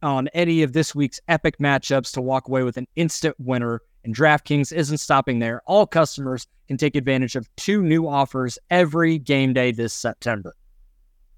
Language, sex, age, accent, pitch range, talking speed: English, male, 20-39, American, 125-155 Hz, 175 wpm